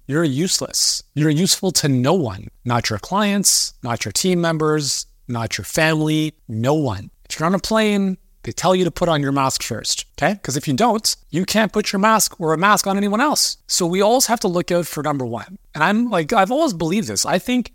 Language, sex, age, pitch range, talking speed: English, male, 30-49, 130-170 Hz, 230 wpm